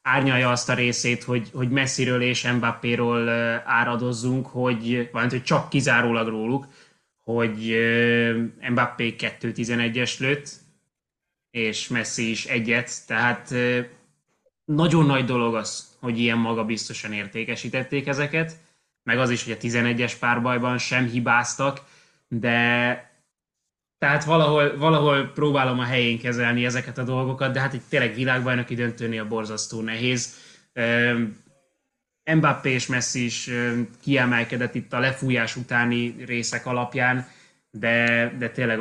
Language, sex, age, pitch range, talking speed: Hungarian, male, 20-39, 120-135 Hz, 120 wpm